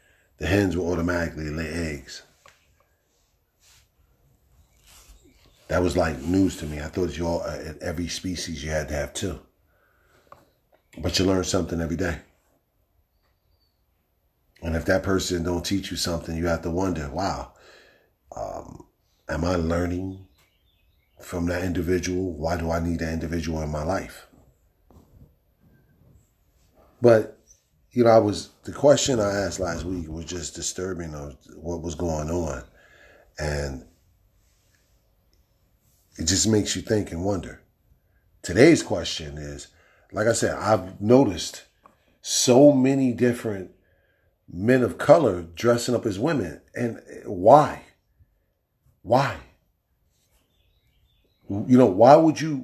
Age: 40-59